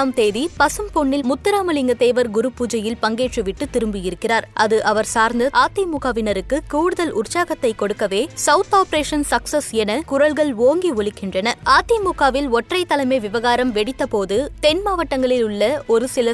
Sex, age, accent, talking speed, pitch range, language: female, 20-39, native, 115 wpm, 225-290 Hz, Tamil